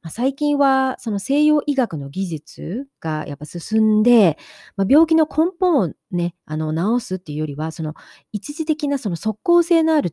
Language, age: Japanese, 40-59